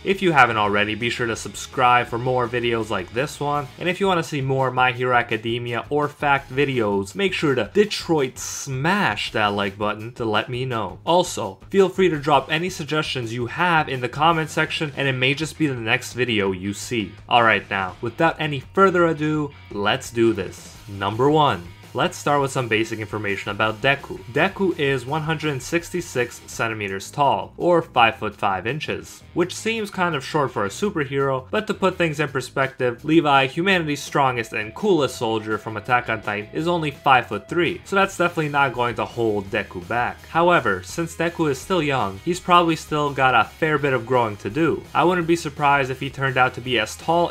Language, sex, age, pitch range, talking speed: English, male, 20-39, 115-160 Hz, 200 wpm